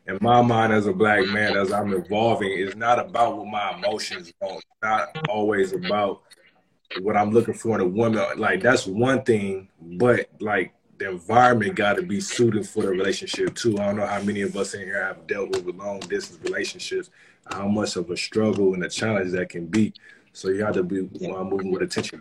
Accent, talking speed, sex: American, 210 wpm, male